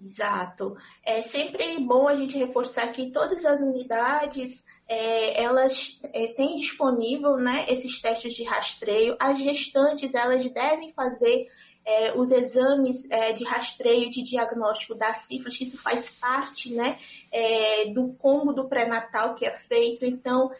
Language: Portuguese